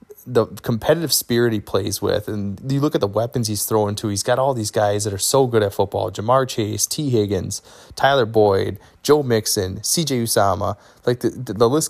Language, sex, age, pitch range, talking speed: English, male, 20-39, 100-120 Hz, 200 wpm